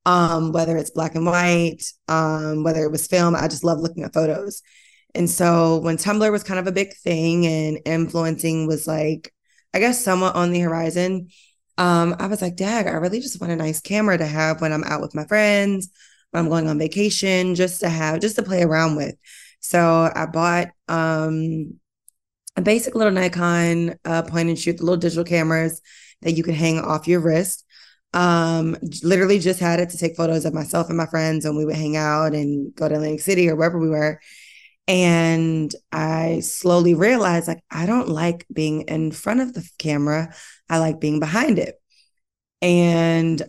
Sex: female